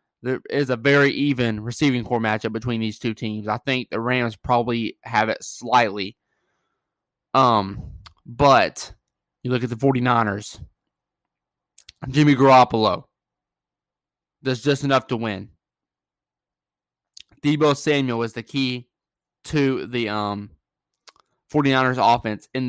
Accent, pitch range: American, 110-140 Hz